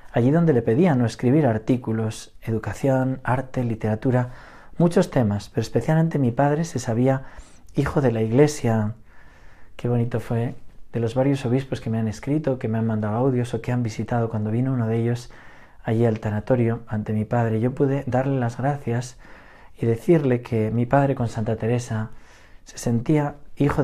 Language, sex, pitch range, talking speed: Spanish, male, 110-135 Hz, 175 wpm